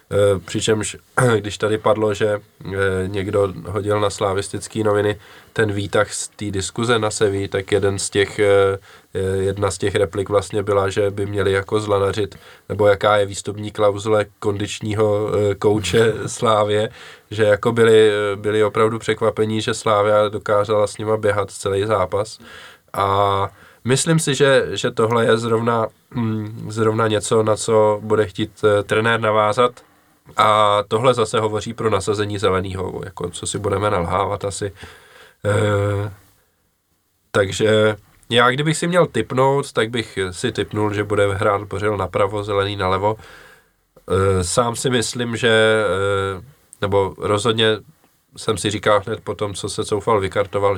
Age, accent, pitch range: 20-39, native, 100-110 Hz